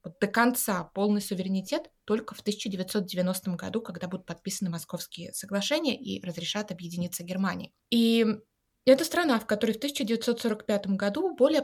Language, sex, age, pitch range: Russian, female, 20-39, 185-240 Hz